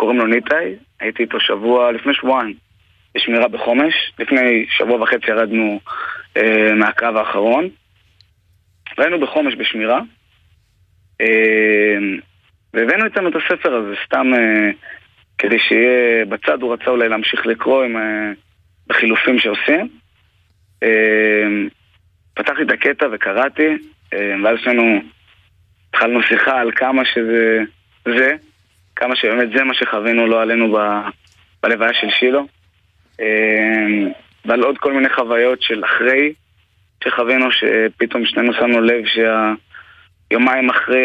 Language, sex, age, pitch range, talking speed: Hebrew, male, 20-39, 100-125 Hz, 115 wpm